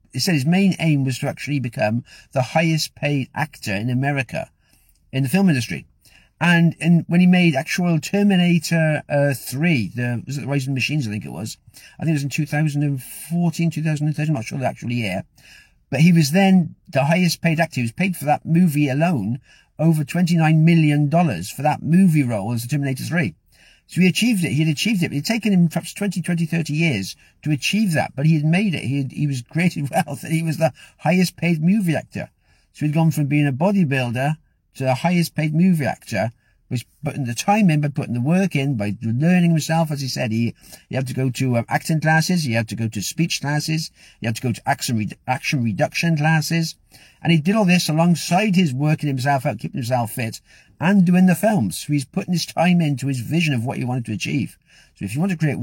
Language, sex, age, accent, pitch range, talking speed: English, male, 50-69, British, 130-170 Hz, 225 wpm